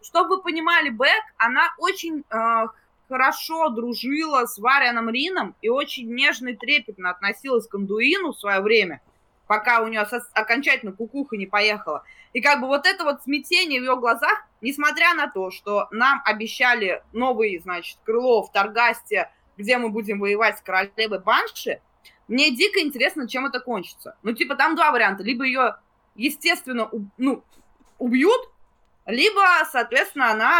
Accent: native